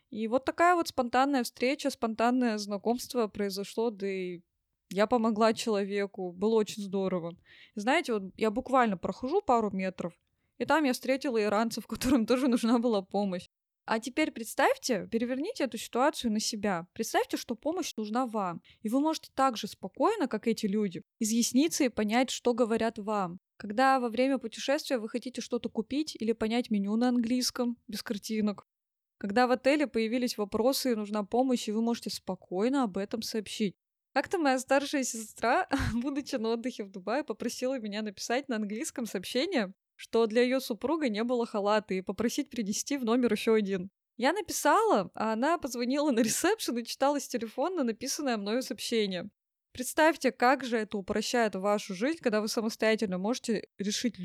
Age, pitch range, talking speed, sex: 20-39, 215-260 Hz, 165 wpm, female